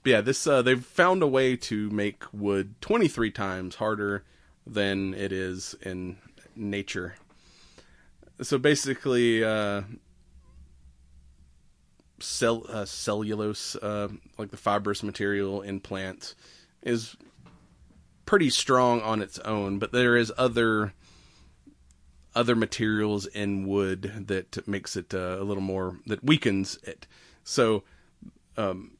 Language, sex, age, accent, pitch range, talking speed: English, male, 30-49, American, 95-115 Hz, 120 wpm